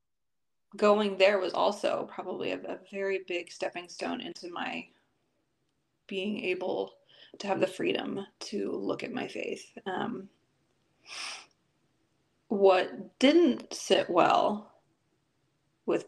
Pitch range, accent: 185-210 Hz, American